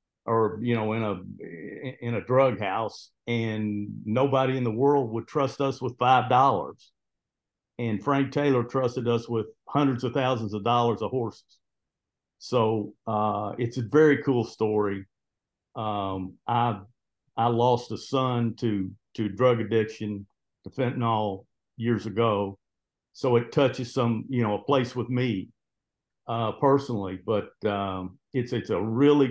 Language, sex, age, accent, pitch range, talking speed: English, male, 50-69, American, 105-125 Hz, 145 wpm